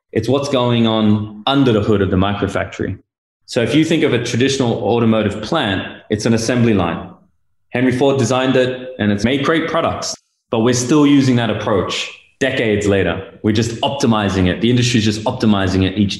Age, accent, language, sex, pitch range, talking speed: 20-39, Australian, English, male, 100-125 Hz, 190 wpm